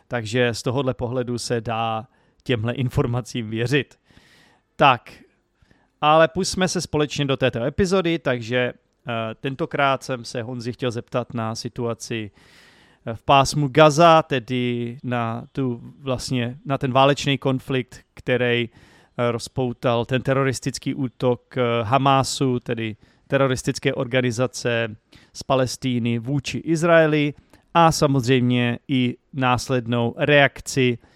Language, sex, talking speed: Czech, male, 105 wpm